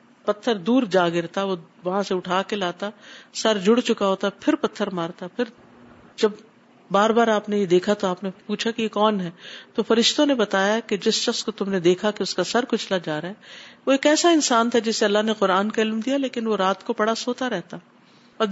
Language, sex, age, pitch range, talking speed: Urdu, female, 50-69, 185-240 Hz, 235 wpm